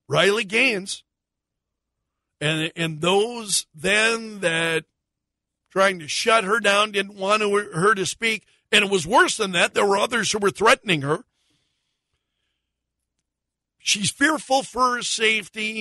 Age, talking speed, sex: 60-79, 135 wpm, male